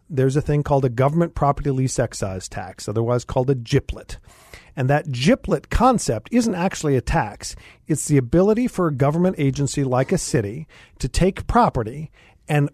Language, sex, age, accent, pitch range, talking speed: English, male, 50-69, American, 125-175 Hz, 170 wpm